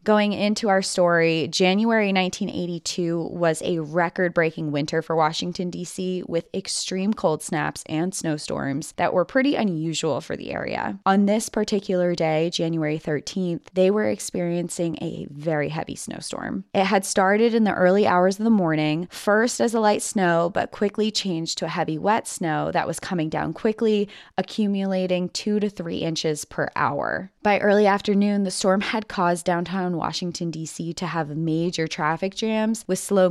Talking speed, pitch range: 165 wpm, 165-200 Hz